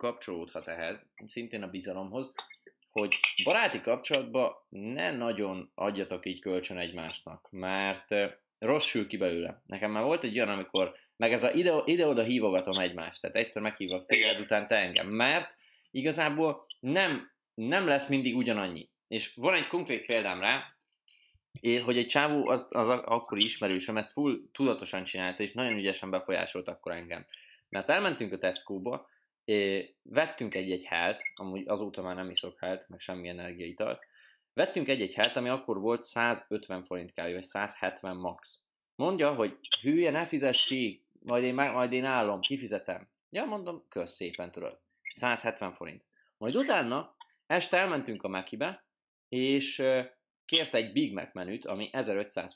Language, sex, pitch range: Hungarian, male, 95-130 Hz